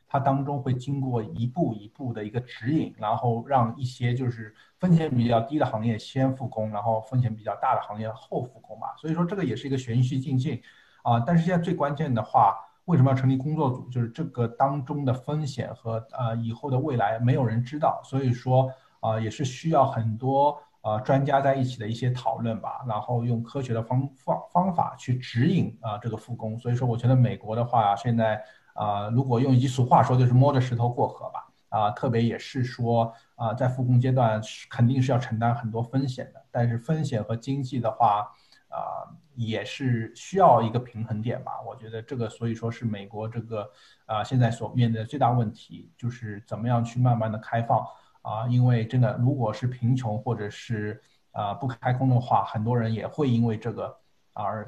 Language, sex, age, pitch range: Chinese, male, 50-69, 115-130 Hz